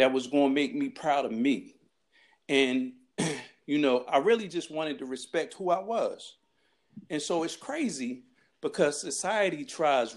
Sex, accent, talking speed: male, American, 165 wpm